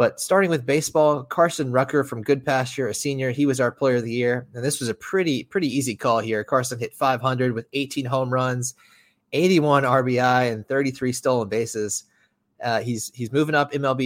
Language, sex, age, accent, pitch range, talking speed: English, male, 20-39, American, 115-135 Hz, 190 wpm